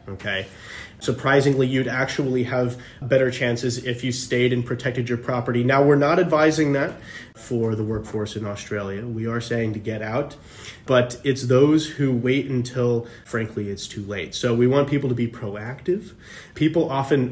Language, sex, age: English, male, 30-49